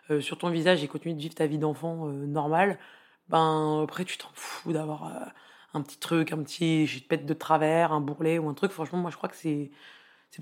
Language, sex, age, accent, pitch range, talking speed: French, female, 20-39, French, 155-180 Hz, 240 wpm